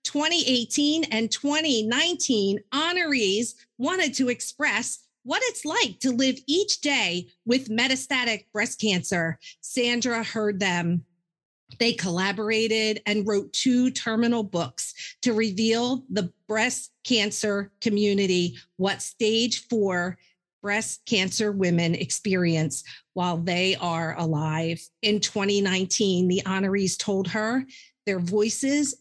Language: English